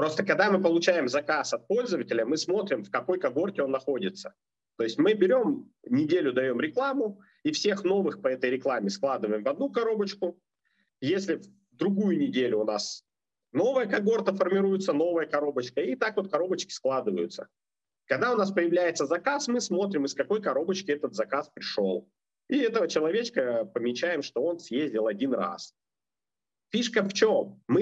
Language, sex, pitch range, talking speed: Russian, male, 140-210 Hz, 155 wpm